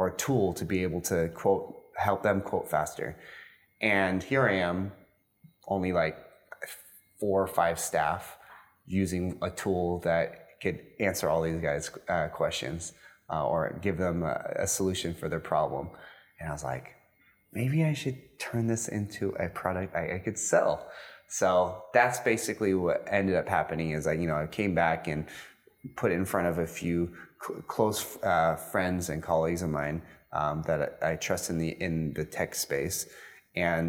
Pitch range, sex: 80-95 Hz, male